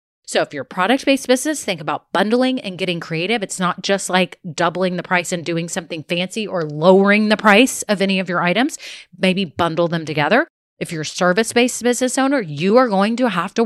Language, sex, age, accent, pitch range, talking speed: English, female, 30-49, American, 170-250 Hz, 210 wpm